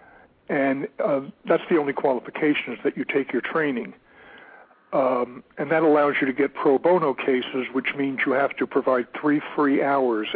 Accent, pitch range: American, 125-145 Hz